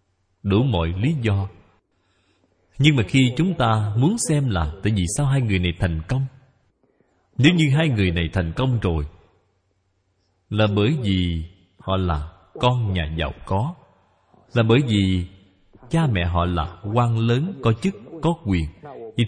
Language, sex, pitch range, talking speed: Vietnamese, male, 90-130 Hz, 160 wpm